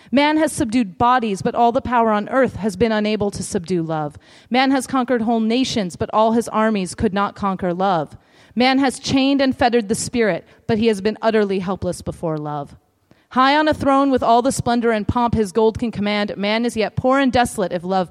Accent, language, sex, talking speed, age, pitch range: American, Swedish, female, 220 wpm, 30-49, 200-270 Hz